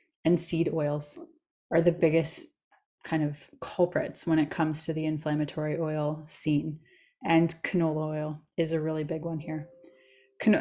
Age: 20-39